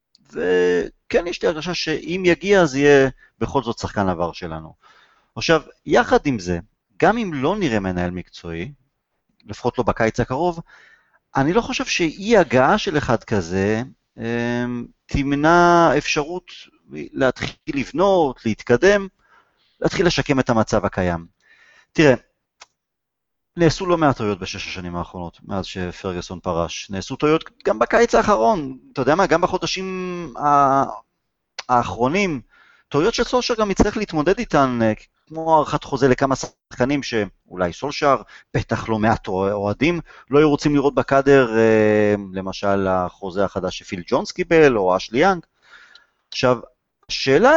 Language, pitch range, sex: Hebrew, 100-165 Hz, male